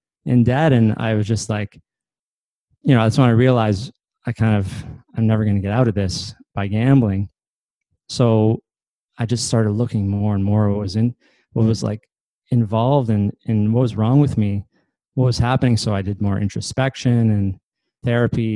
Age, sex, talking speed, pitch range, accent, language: 20-39, male, 190 wpm, 105-125 Hz, American, English